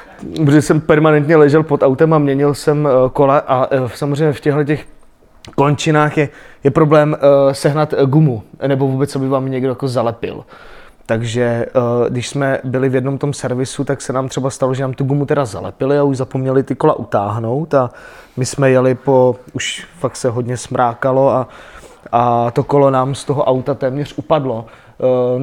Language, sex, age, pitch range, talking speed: Czech, male, 20-39, 135-160 Hz, 170 wpm